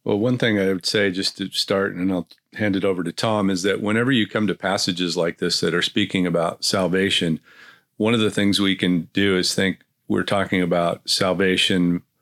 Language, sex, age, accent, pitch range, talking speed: English, male, 40-59, American, 90-105 Hz, 210 wpm